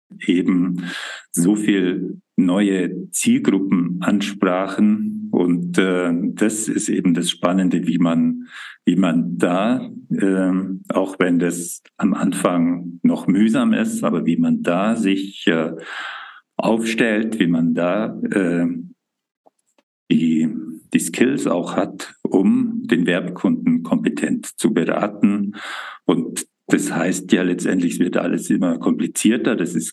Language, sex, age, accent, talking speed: German, male, 50-69, German, 120 wpm